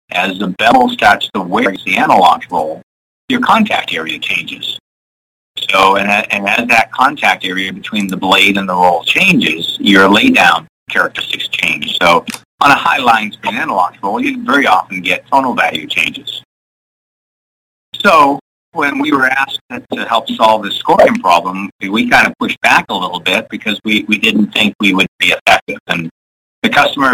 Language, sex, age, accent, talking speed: English, male, 50-69, American, 170 wpm